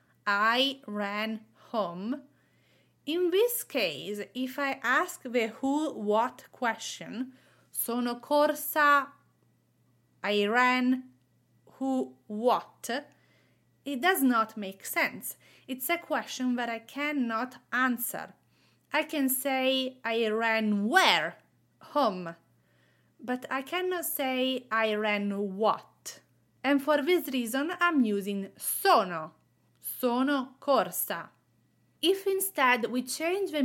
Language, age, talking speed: English, 30-49, 105 wpm